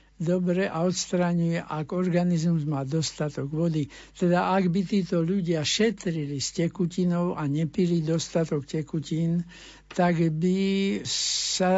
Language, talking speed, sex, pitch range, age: Slovak, 115 wpm, male, 155-180 Hz, 60-79